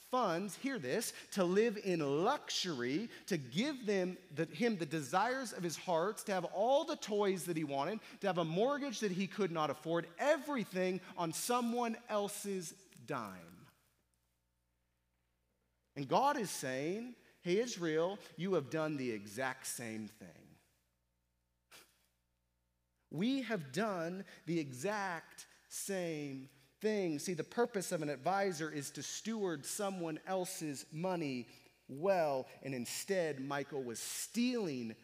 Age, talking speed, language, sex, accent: 30-49, 130 wpm, English, male, American